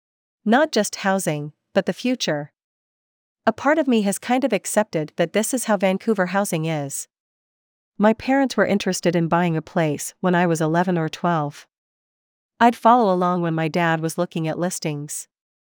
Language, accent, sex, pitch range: English, American, female, 165-210 Hz